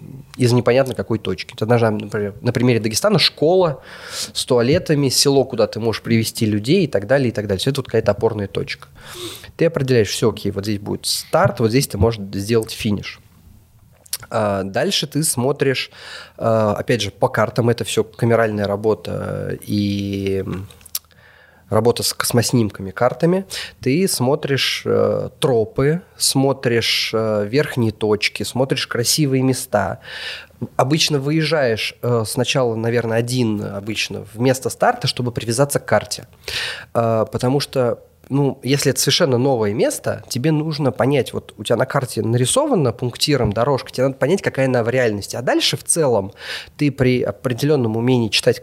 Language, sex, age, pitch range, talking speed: Russian, male, 20-39, 105-135 Hz, 150 wpm